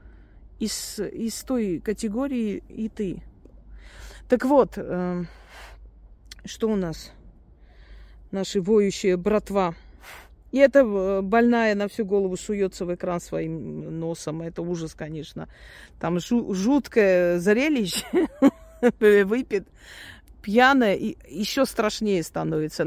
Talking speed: 100 wpm